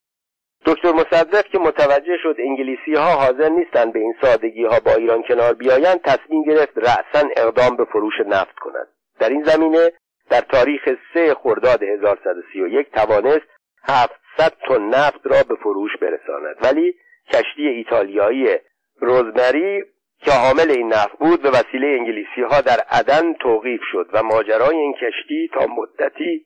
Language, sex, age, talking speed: Persian, male, 50-69, 145 wpm